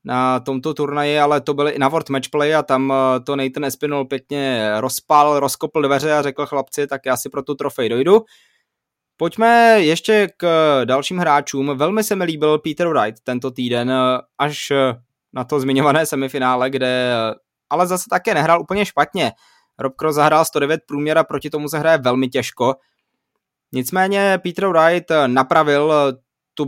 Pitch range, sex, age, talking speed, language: 135-160 Hz, male, 20-39, 160 wpm, Czech